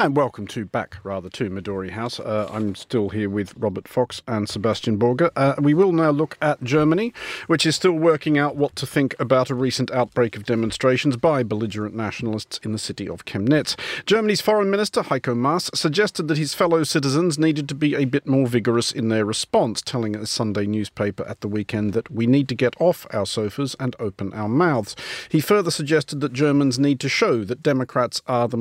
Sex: male